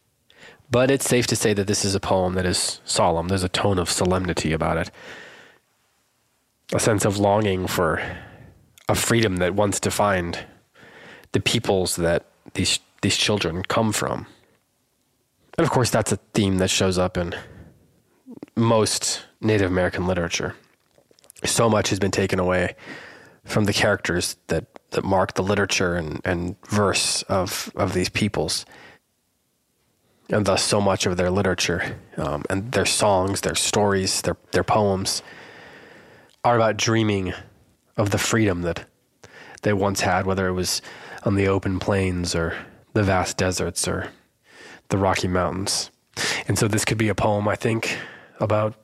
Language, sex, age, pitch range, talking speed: English, male, 20-39, 90-105 Hz, 155 wpm